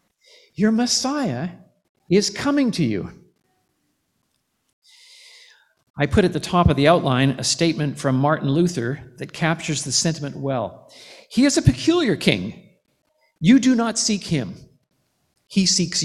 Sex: male